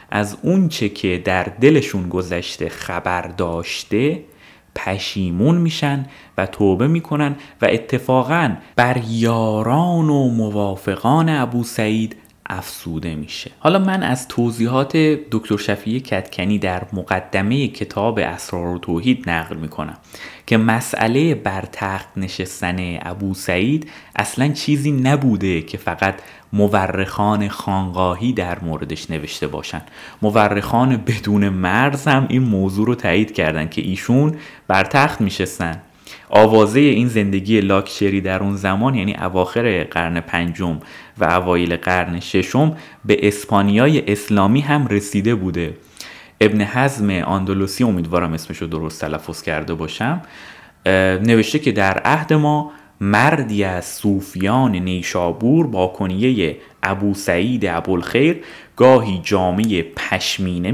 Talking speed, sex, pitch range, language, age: 115 wpm, male, 90-125 Hz, Persian, 30-49